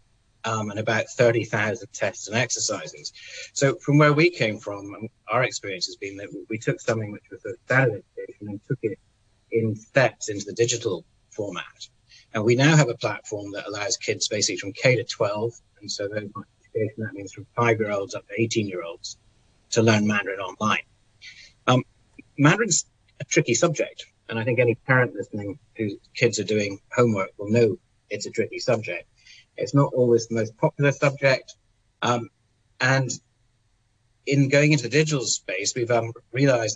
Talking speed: 165 wpm